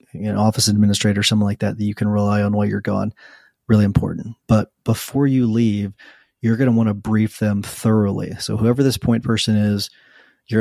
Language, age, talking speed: English, 40-59, 200 wpm